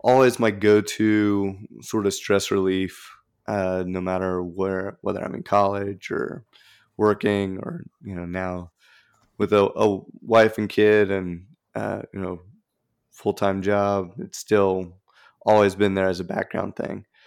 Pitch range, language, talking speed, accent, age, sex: 95-105 Hz, English, 155 wpm, American, 20-39, male